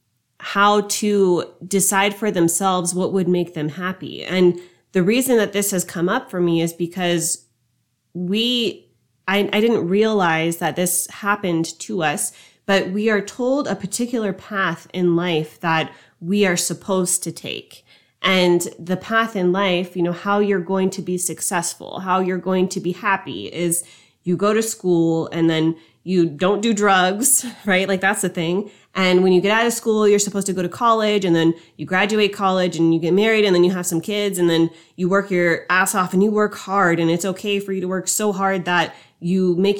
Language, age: English, 30-49